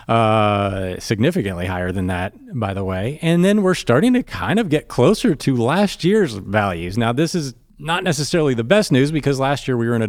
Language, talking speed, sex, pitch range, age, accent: English, 215 wpm, male, 115-160 Hz, 40-59, American